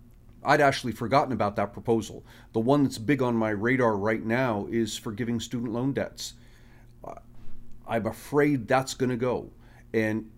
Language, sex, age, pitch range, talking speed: English, male, 40-59, 115-155 Hz, 155 wpm